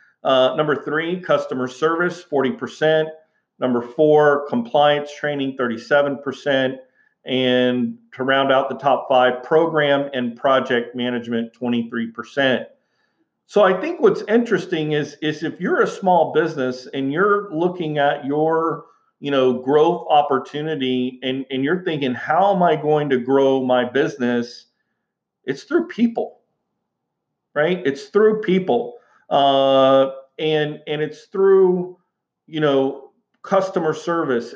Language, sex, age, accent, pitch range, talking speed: English, male, 40-59, American, 130-160 Hz, 130 wpm